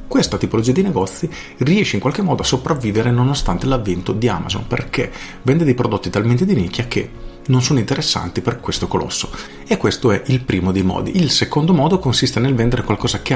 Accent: native